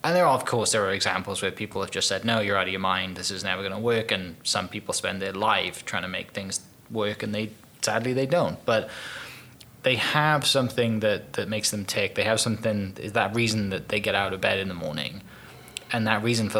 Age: 20-39